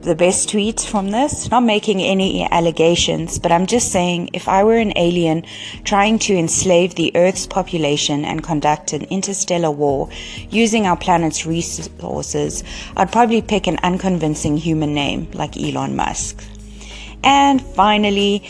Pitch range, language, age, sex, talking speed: 155-200 Hz, English, 30-49, female, 145 wpm